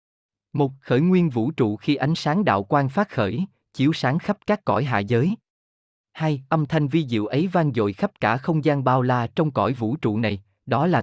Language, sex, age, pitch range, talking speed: Vietnamese, male, 20-39, 110-155 Hz, 220 wpm